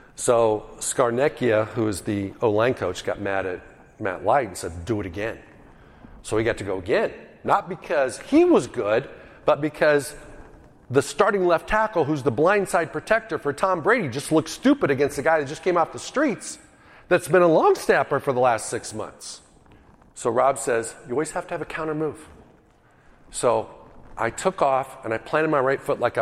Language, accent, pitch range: English, American, 120-185 Hz